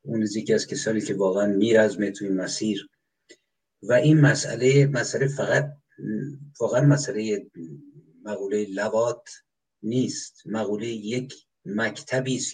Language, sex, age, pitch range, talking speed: Persian, male, 50-69, 105-140 Hz, 115 wpm